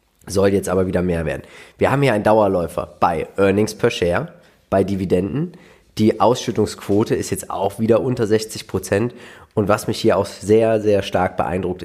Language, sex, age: German, male, 30-49